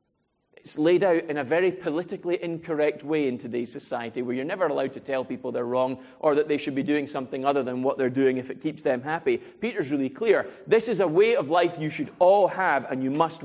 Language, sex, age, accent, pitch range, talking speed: English, male, 30-49, British, 140-190 Hz, 240 wpm